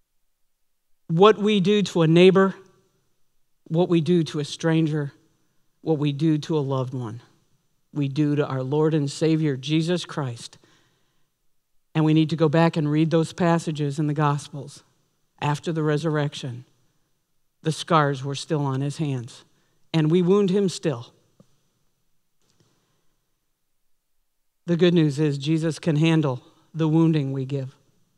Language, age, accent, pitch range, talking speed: English, 50-69, American, 145-170 Hz, 145 wpm